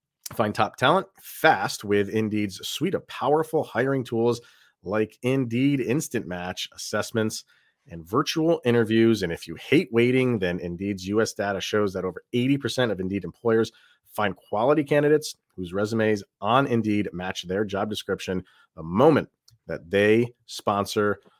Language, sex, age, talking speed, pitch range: English, male, 40-59, 145 wpm, 100-125 Hz